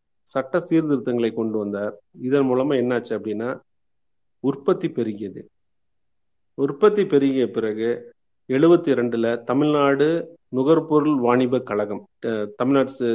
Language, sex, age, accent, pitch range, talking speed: Tamil, male, 40-59, native, 120-145 Hz, 90 wpm